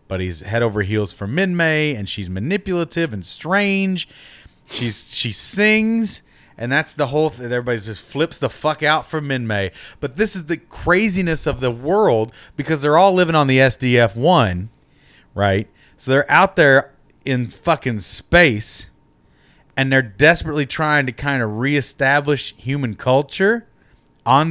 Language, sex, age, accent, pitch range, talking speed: English, male, 30-49, American, 120-180 Hz, 150 wpm